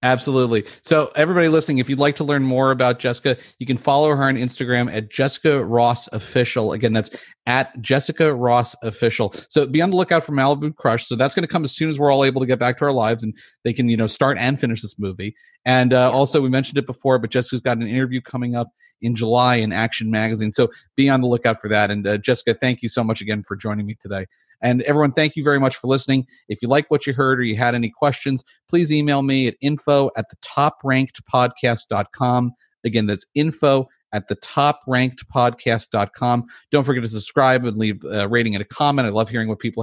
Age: 40-59